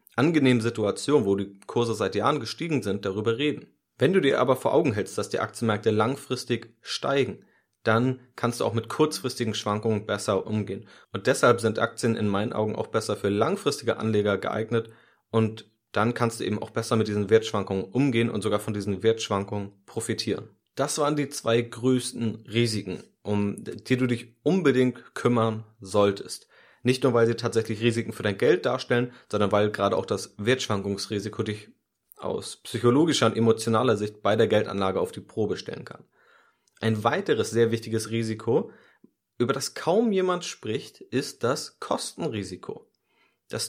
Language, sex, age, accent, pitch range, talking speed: German, male, 30-49, German, 105-125 Hz, 165 wpm